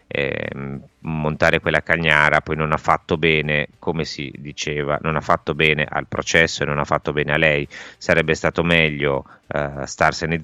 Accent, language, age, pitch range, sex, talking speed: native, Italian, 30-49, 75-85 Hz, male, 170 wpm